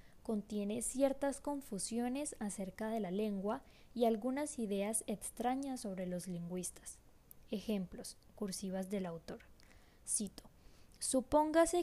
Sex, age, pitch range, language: female, 20-39, 200-250 Hz, Spanish